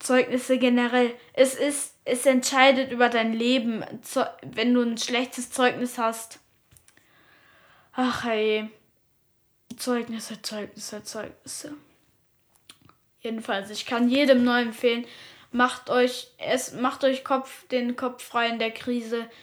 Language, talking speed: German, 115 wpm